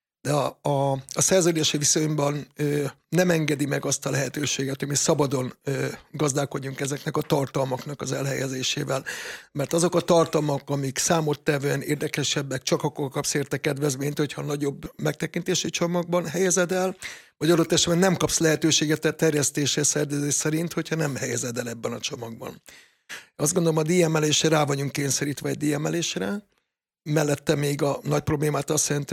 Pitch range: 145-165 Hz